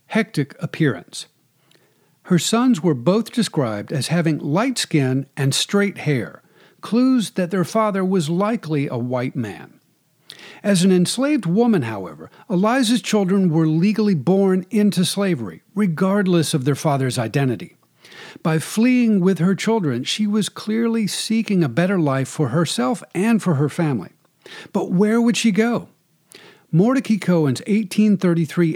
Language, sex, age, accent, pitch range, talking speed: English, male, 50-69, American, 150-215 Hz, 140 wpm